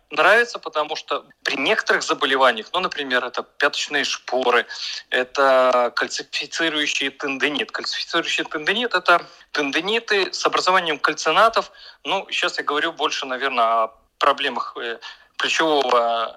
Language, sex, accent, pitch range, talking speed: Russian, male, native, 135-200 Hz, 110 wpm